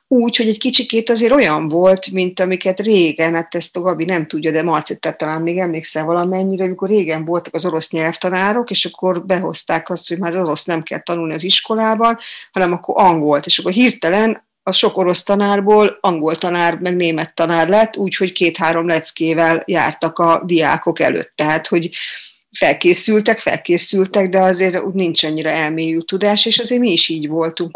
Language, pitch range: Hungarian, 165-185 Hz